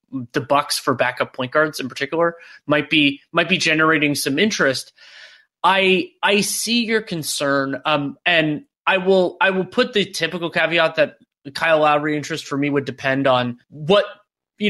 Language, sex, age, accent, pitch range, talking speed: English, male, 30-49, American, 140-175 Hz, 165 wpm